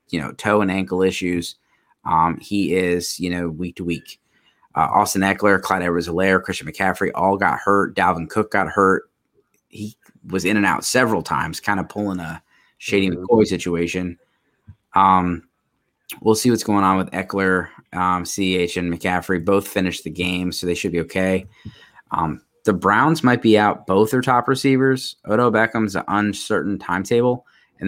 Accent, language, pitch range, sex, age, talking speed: American, English, 90-105 Hz, male, 20-39, 170 wpm